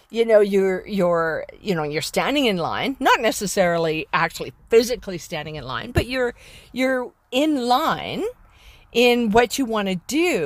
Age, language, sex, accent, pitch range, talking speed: 50-69, English, female, American, 185-305 Hz, 160 wpm